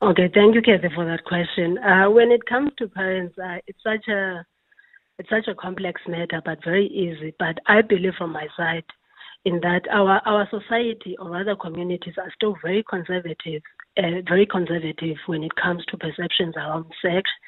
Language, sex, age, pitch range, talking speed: English, female, 30-49, 165-200 Hz, 185 wpm